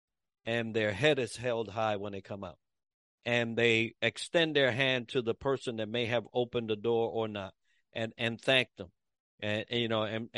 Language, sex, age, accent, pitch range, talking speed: English, male, 60-79, American, 110-140 Hz, 200 wpm